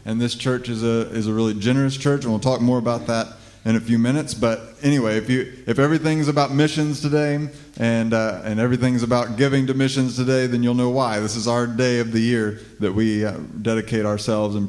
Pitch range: 105-130 Hz